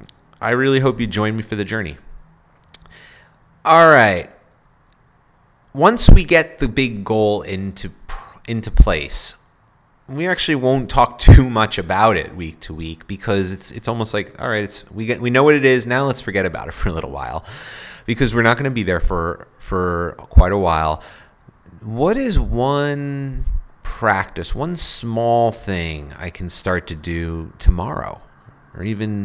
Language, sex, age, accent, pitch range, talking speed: English, male, 30-49, American, 85-115 Hz, 170 wpm